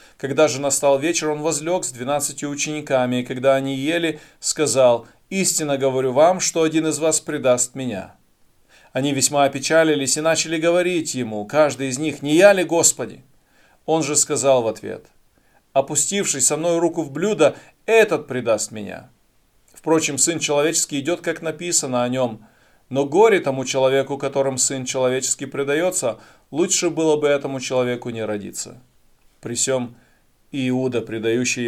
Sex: male